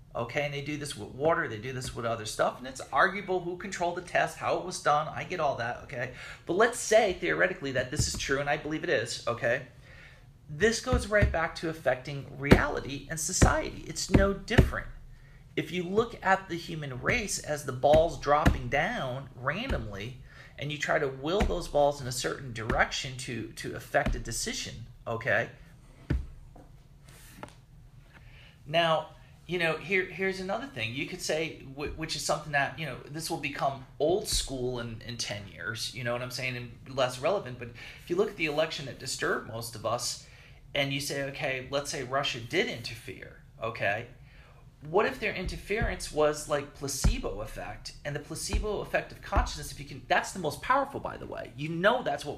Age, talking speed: 40-59, 190 wpm